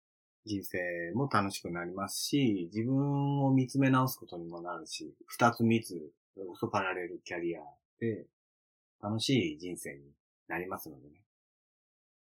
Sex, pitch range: male, 105-155 Hz